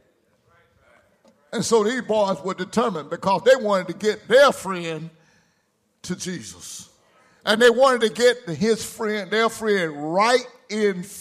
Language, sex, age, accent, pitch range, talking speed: English, male, 60-79, American, 190-225 Hz, 140 wpm